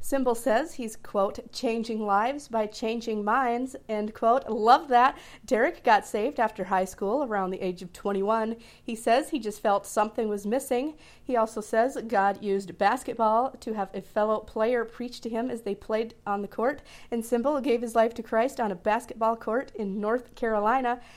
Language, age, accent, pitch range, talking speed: English, 40-59, American, 200-235 Hz, 185 wpm